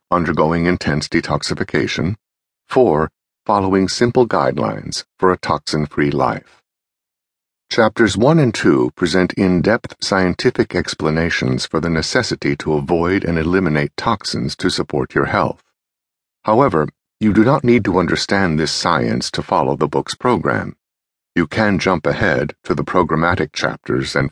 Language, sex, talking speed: English, male, 135 wpm